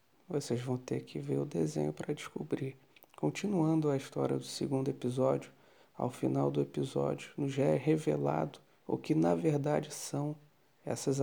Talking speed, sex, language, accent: 150 wpm, male, Portuguese, Brazilian